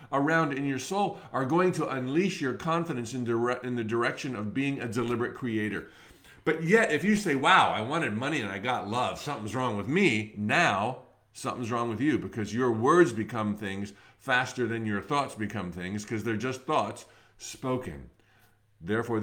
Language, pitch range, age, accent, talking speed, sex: English, 110-170 Hz, 50-69, American, 185 wpm, male